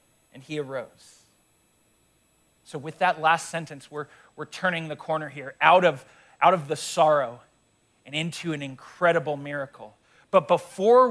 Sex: male